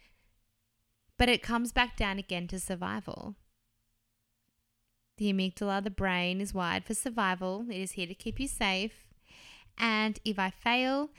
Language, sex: English, female